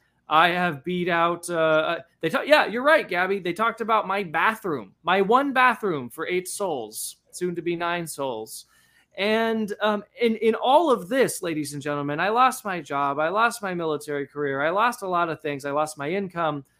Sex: male